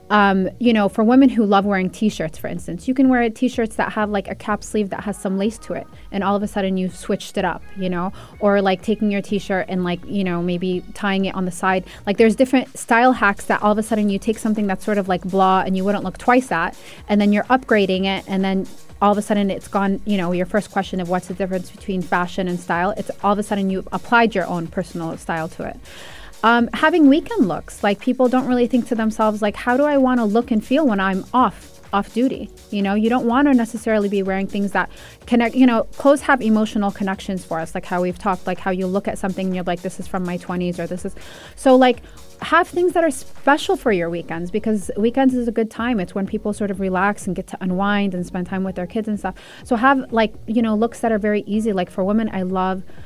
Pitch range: 190-230 Hz